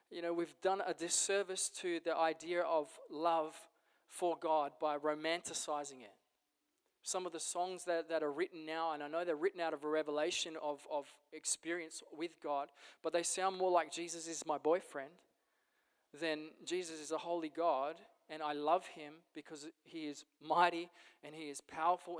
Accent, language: Australian, English